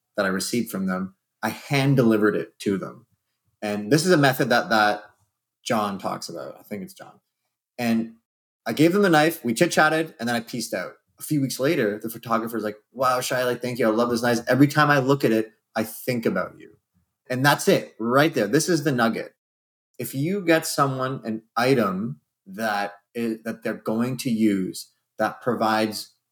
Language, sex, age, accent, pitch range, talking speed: English, male, 30-49, American, 110-140 Hz, 205 wpm